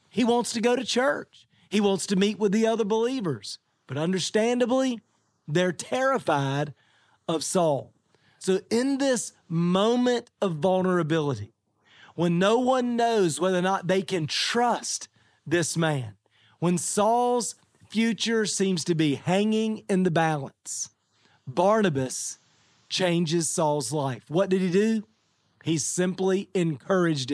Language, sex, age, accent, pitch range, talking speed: English, male, 40-59, American, 145-215 Hz, 130 wpm